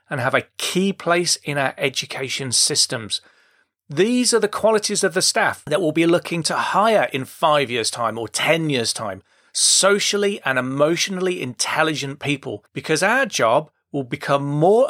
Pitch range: 135-180 Hz